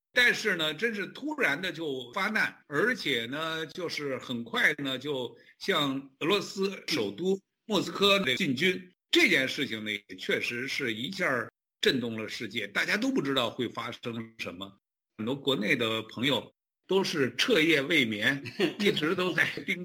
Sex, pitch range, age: male, 130-195 Hz, 60-79